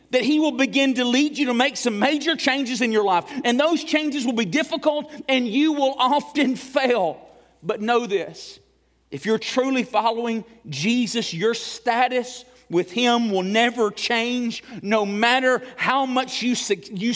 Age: 40-59